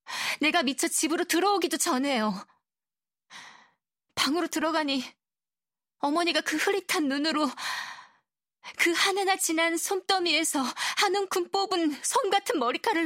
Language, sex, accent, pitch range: Korean, female, native, 210-345 Hz